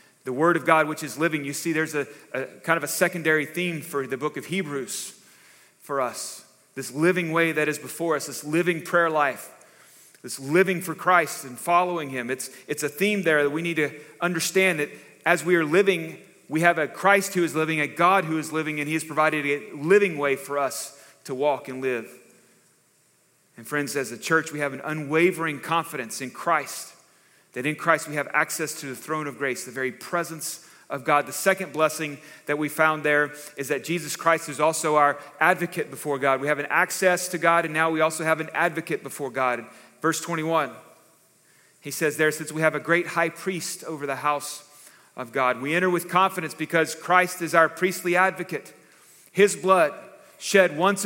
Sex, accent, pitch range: male, American, 145-175 Hz